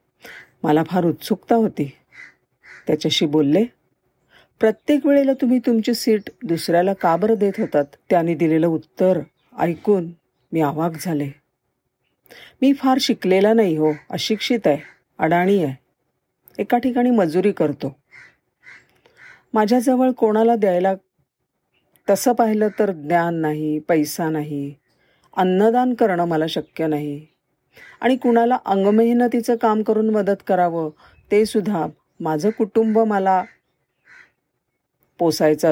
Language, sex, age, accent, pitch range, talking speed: Marathi, female, 40-59, native, 160-225 Hz, 105 wpm